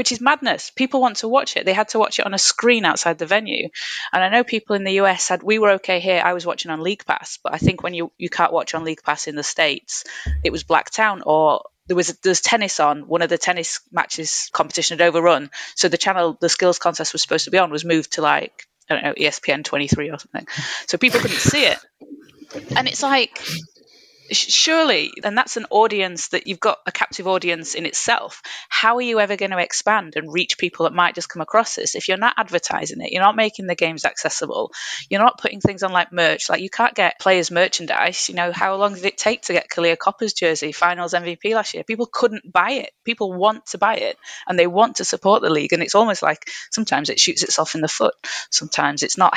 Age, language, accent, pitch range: 30-49, English, British, 170-215 Hz